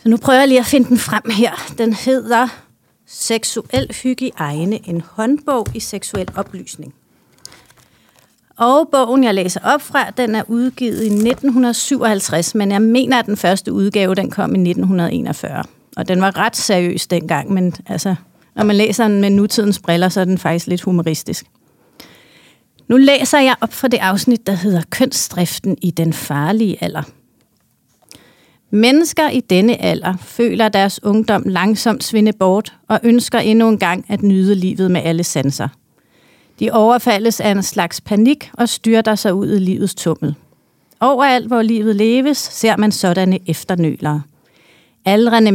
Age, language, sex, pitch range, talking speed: 40-59, Danish, female, 185-235 Hz, 160 wpm